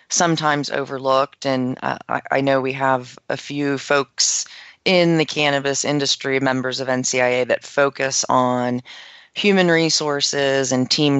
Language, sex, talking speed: English, female, 140 wpm